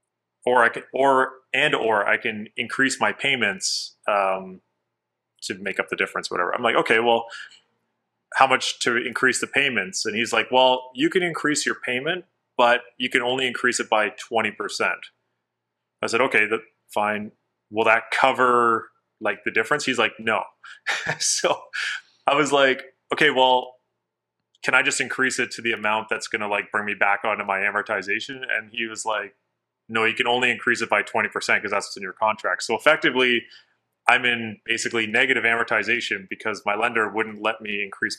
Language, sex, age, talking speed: English, male, 30-49, 180 wpm